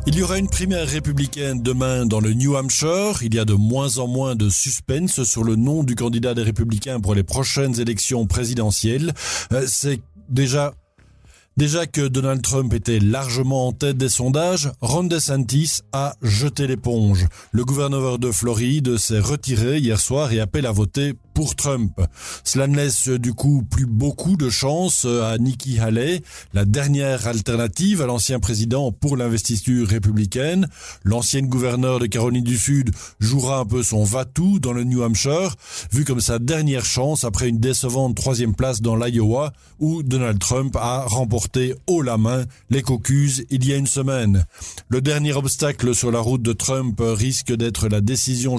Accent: French